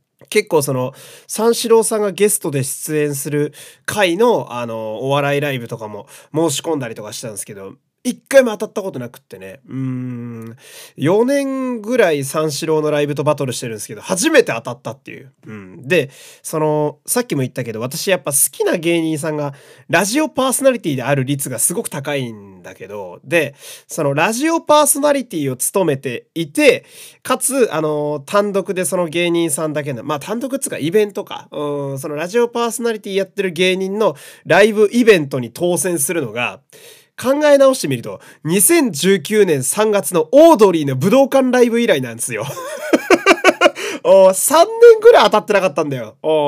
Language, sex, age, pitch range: Japanese, male, 20-39, 140-230 Hz